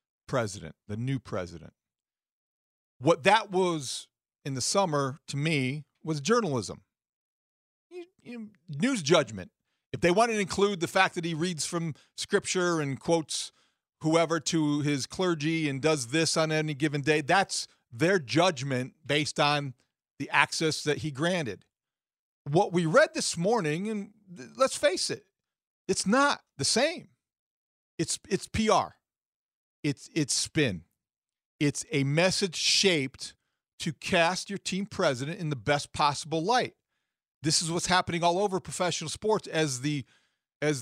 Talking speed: 140 wpm